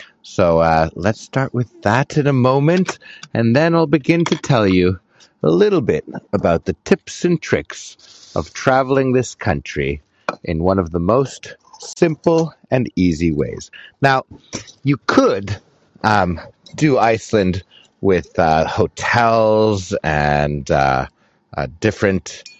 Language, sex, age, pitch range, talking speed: English, male, 50-69, 85-135 Hz, 135 wpm